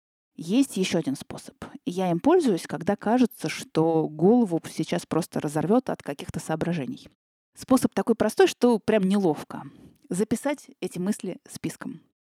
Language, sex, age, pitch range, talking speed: Russian, female, 30-49, 175-240 Hz, 130 wpm